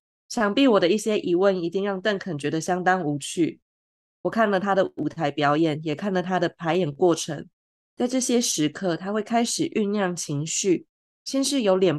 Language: Chinese